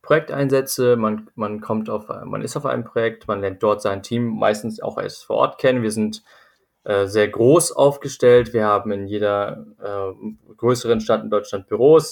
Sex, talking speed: male, 170 wpm